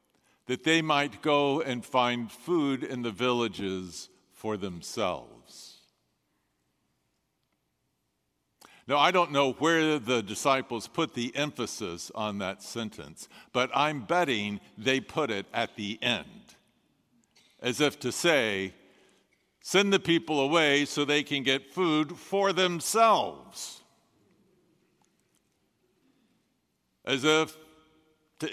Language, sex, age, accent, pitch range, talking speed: English, male, 60-79, American, 120-150 Hz, 110 wpm